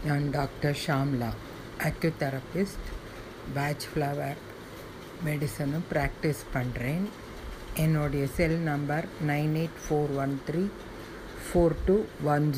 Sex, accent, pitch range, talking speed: female, native, 130-170 Hz, 70 wpm